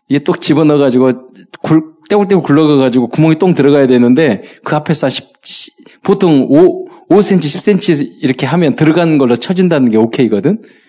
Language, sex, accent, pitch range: Korean, male, native, 120-180 Hz